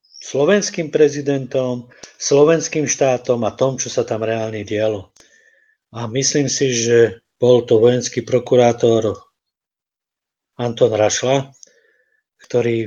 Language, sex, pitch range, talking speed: Czech, male, 120-140 Hz, 105 wpm